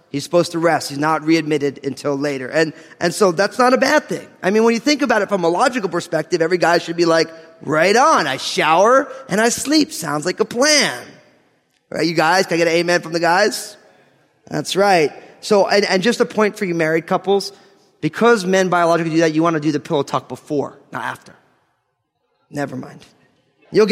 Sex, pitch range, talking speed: male, 155-205 Hz, 215 wpm